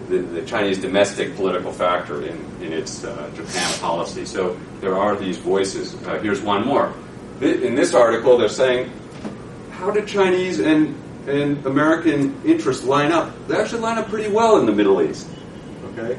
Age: 40-59